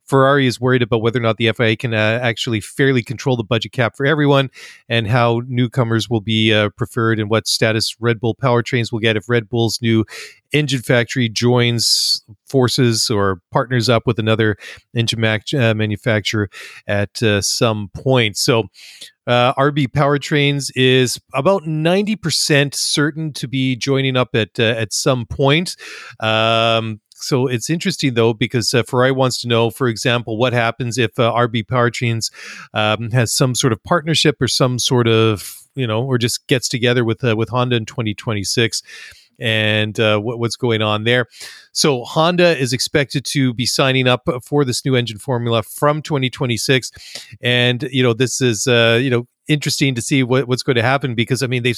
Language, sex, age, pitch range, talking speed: English, male, 40-59, 115-140 Hz, 180 wpm